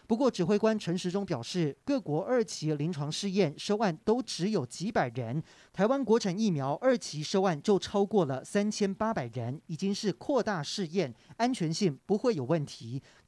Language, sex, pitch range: Chinese, male, 155-215 Hz